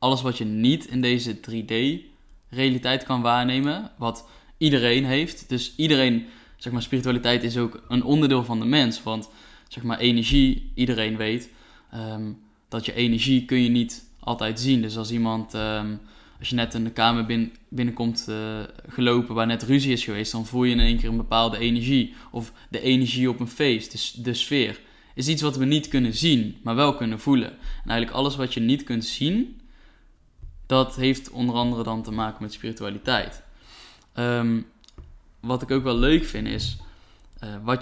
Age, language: 10-29, Dutch